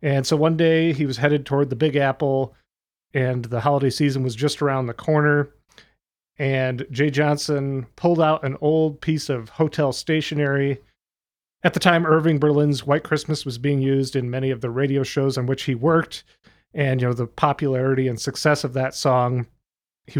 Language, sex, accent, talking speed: English, male, American, 185 wpm